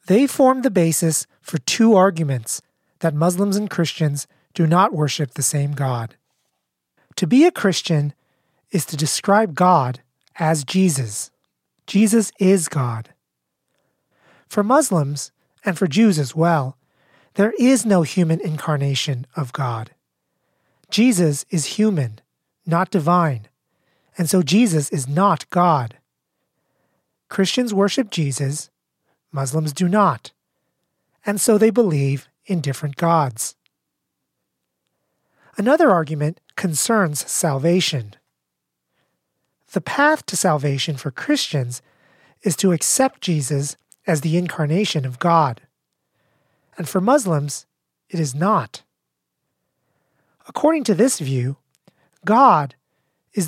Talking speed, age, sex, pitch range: 110 wpm, 30-49, male, 140-195 Hz